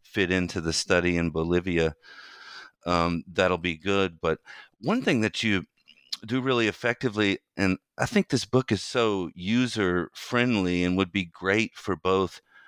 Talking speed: 155 wpm